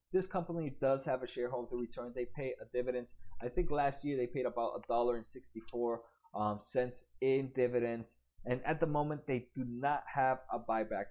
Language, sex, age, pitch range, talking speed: English, male, 20-39, 125-160 Hz, 190 wpm